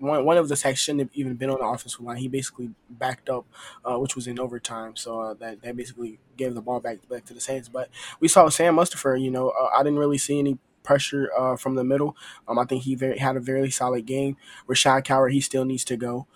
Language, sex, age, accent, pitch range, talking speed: English, male, 20-39, American, 125-135 Hz, 255 wpm